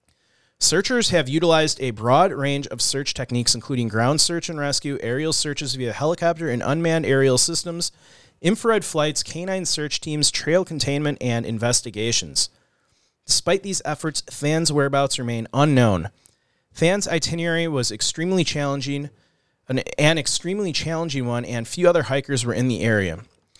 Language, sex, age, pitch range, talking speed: English, male, 30-49, 125-160 Hz, 140 wpm